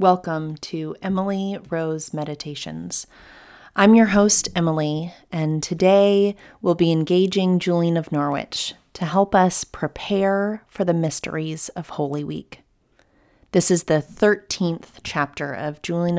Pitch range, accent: 155-190 Hz, American